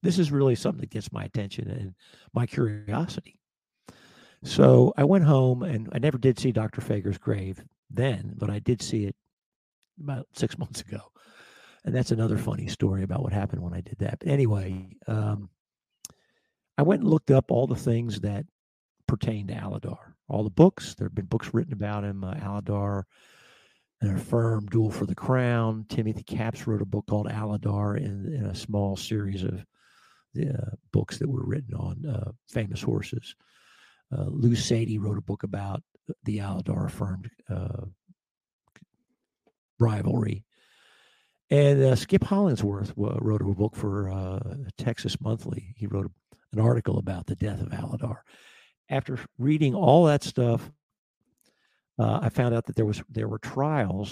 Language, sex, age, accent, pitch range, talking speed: English, male, 50-69, American, 100-130 Hz, 165 wpm